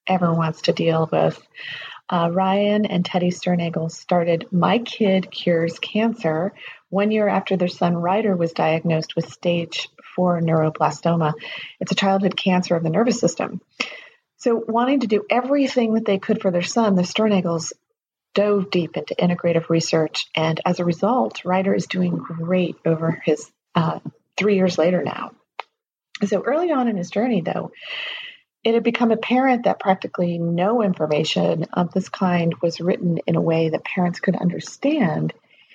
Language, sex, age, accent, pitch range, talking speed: English, female, 40-59, American, 165-205 Hz, 160 wpm